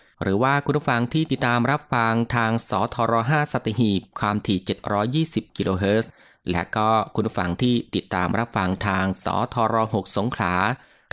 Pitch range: 95-120 Hz